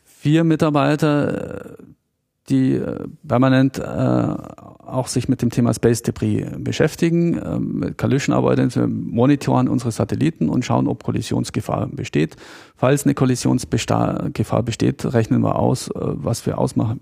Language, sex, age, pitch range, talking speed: German, male, 40-59, 105-140 Hz, 130 wpm